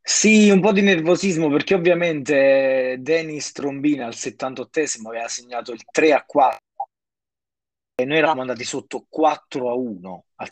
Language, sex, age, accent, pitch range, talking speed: Italian, male, 20-39, native, 115-140 Hz, 155 wpm